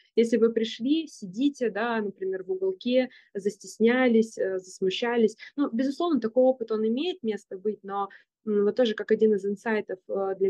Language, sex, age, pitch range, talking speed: Russian, female, 20-39, 200-245 Hz, 155 wpm